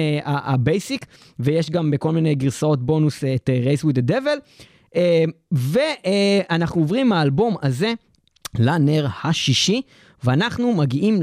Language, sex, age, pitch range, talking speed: Hebrew, male, 20-39, 145-215 Hz, 130 wpm